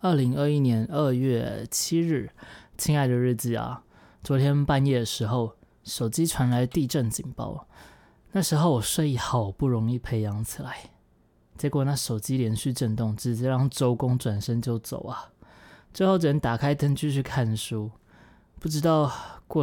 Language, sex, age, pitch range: Chinese, male, 20-39, 115-150 Hz